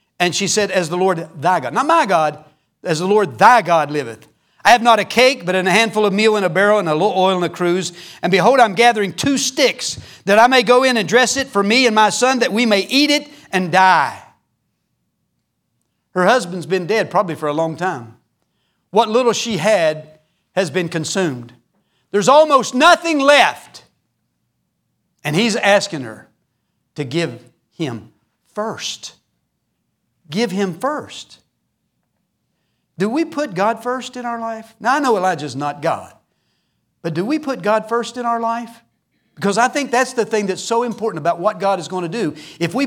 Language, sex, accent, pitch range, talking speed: English, male, American, 155-230 Hz, 190 wpm